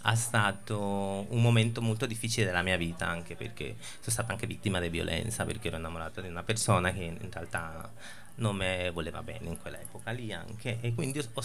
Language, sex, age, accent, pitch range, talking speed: Italian, male, 30-49, native, 95-120 Hz, 200 wpm